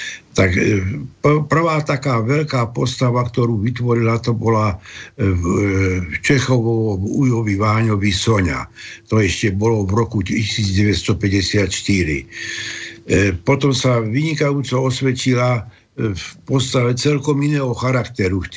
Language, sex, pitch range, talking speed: Slovak, male, 100-130 Hz, 95 wpm